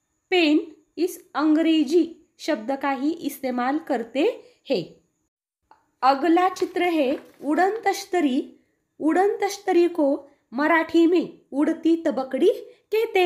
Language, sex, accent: Marathi, female, native